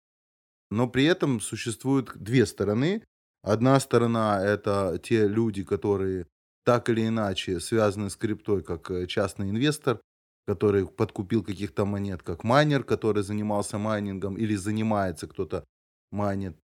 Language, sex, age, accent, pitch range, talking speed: Russian, male, 20-39, native, 100-125 Hz, 125 wpm